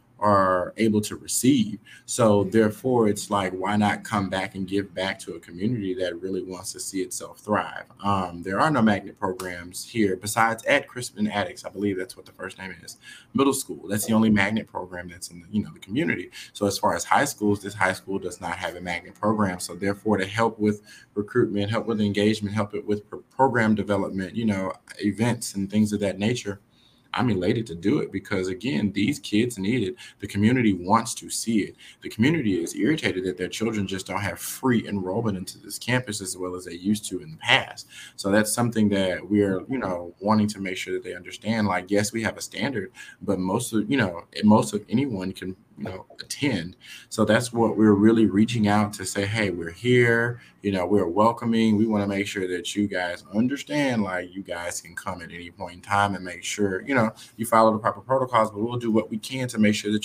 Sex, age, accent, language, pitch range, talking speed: male, 20-39, American, English, 95-110 Hz, 220 wpm